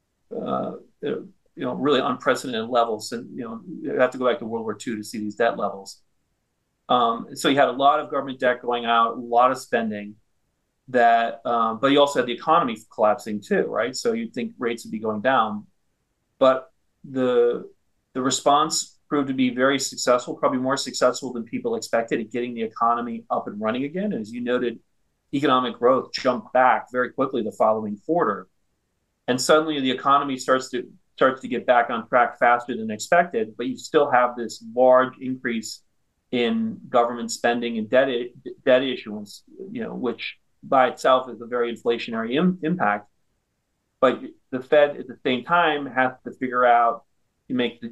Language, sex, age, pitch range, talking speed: English, male, 40-59, 115-135 Hz, 185 wpm